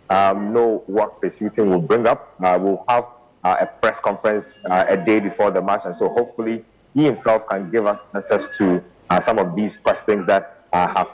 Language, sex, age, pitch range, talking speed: English, male, 30-49, 95-115 Hz, 215 wpm